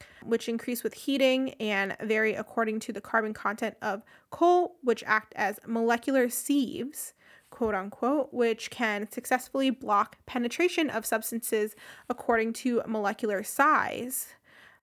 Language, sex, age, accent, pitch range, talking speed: English, female, 20-39, American, 220-260 Hz, 120 wpm